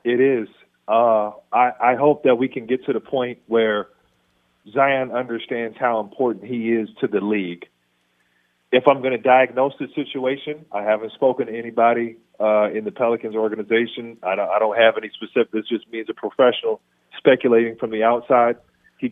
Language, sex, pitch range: English, male, 110-130 Hz